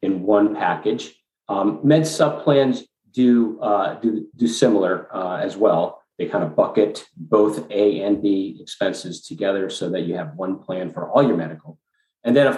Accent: American